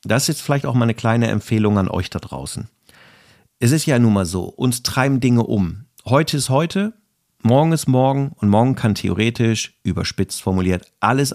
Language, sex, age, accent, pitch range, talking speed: German, male, 50-69, German, 110-135 Hz, 185 wpm